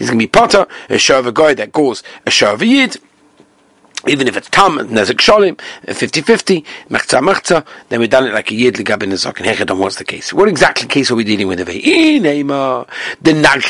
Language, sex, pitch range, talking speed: English, male, 140-210 Hz, 215 wpm